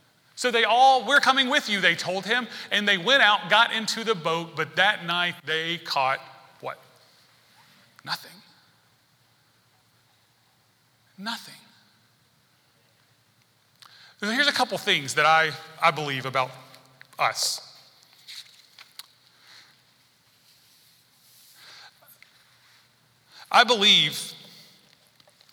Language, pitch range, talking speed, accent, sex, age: English, 135-185 Hz, 90 wpm, American, male, 30-49